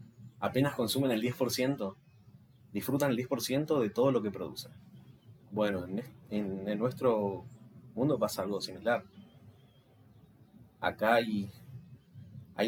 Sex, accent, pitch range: male, Argentinian, 100-130 Hz